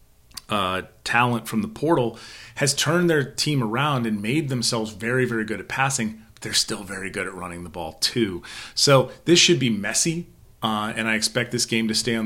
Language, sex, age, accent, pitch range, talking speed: English, male, 30-49, American, 100-125 Hz, 205 wpm